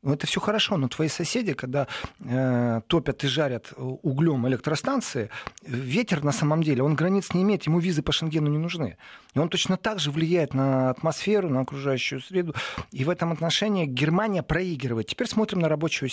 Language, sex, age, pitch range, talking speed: Russian, male, 40-59, 130-180 Hz, 180 wpm